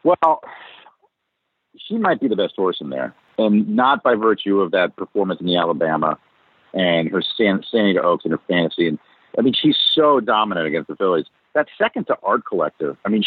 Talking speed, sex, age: 190 wpm, male, 50-69